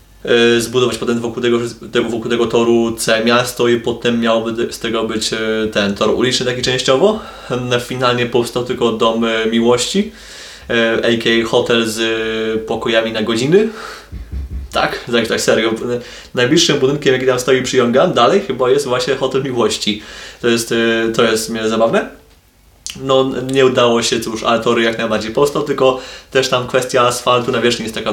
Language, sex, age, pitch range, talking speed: Polish, male, 20-39, 115-130 Hz, 150 wpm